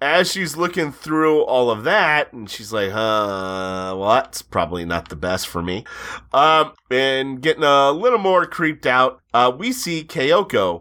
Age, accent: 30-49, American